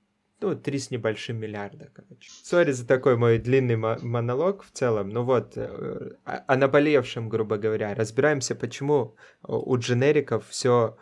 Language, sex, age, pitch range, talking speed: Russian, male, 20-39, 110-145 Hz, 135 wpm